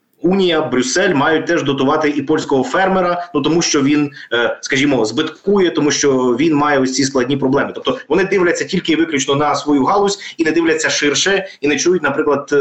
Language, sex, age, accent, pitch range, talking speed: Ukrainian, male, 20-39, native, 130-160 Hz, 185 wpm